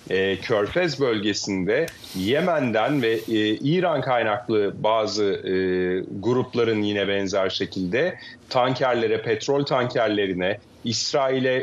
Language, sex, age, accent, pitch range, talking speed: Turkish, male, 40-59, native, 110-135 Hz, 75 wpm